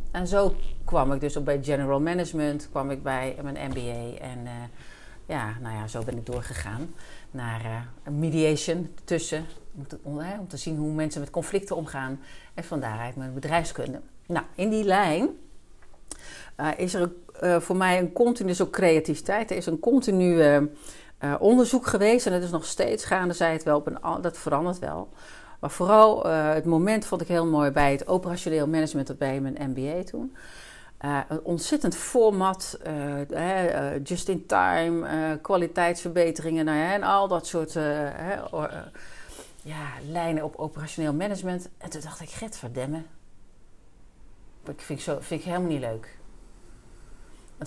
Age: 40-59